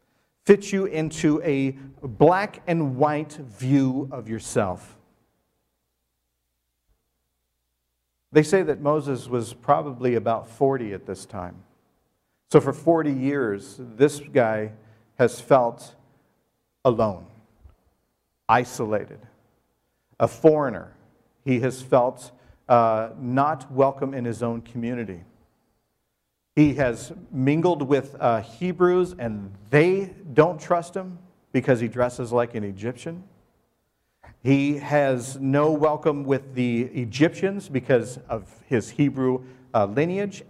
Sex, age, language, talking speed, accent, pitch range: male, 50-69, English, 110 wpm, American, 100-145 Hz